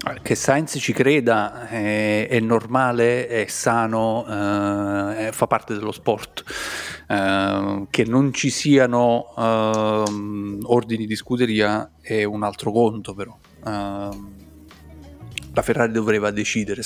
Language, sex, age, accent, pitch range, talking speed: Italian, male, 30-49, native, 105-120 Hz, 115 wpm